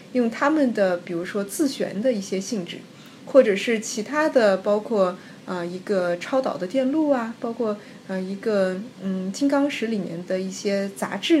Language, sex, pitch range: Chinese, female, 185-240 Hz